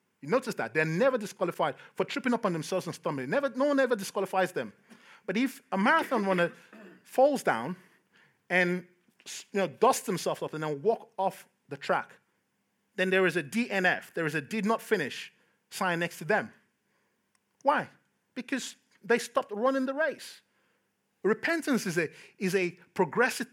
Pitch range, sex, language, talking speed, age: 165-225 Hz, male, English, 165 wpm, 30-49